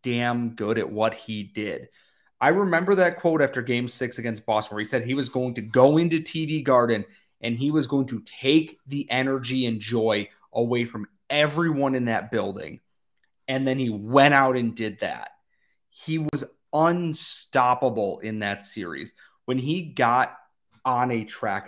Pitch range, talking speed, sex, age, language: 110-145 Hz, 170 wpm, male, 30-49, English